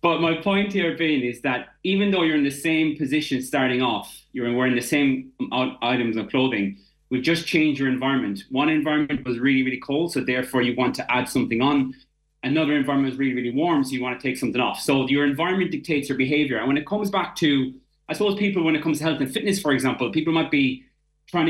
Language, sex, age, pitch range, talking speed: English, male, 30-49, 130-175 Hz, 230 wpm